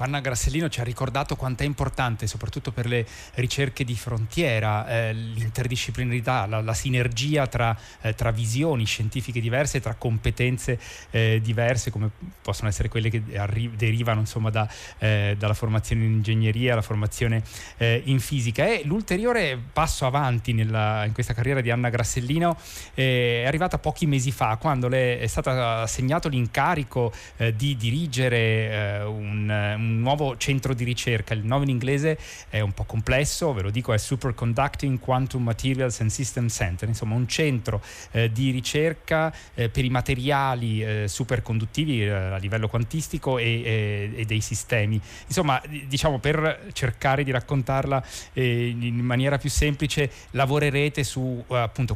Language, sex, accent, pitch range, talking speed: Italian, male, native, 110-135 Hz, 155 wpm